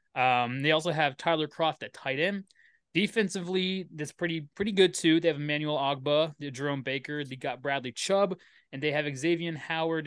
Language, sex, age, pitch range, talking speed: English, male, 20-39, 135-165 Hz, 185 wpm